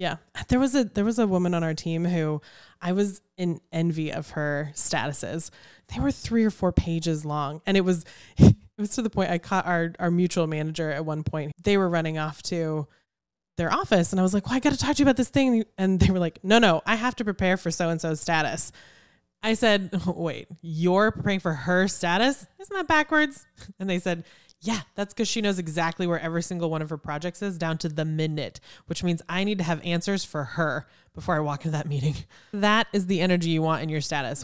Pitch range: 160-205 Hz